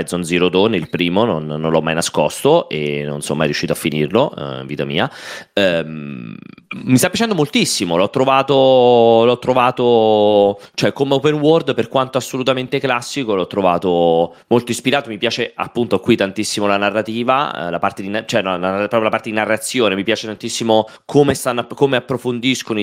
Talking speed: 175 wpm